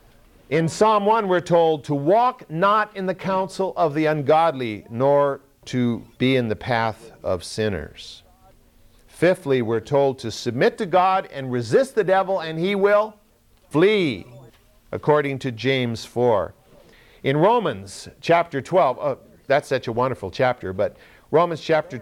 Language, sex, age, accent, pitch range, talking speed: English, male, 50-69, American, 120-185 Hz, 145 wpm